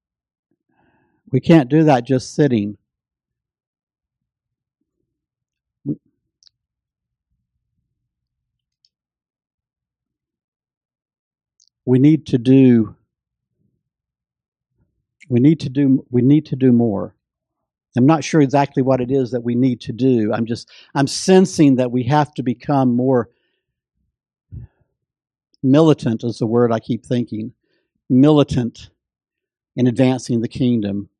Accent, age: American, 60-79